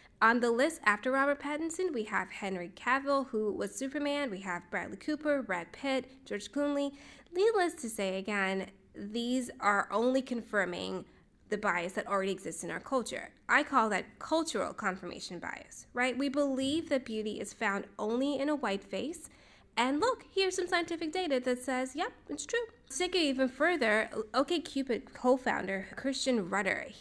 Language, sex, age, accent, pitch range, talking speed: English, female, 10-29, American, 205-280 Hz, 170 wpm